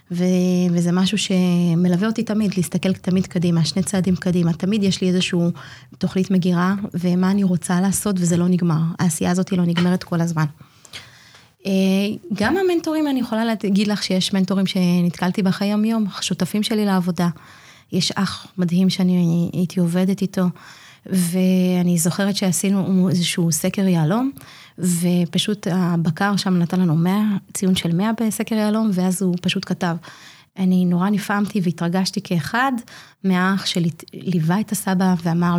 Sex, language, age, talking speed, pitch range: female, Hebrew, 30-49, 140 wpm, 175-200 Hz